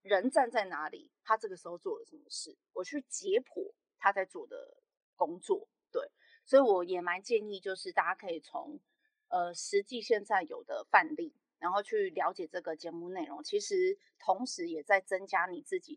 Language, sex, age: Chinese, female, 20-39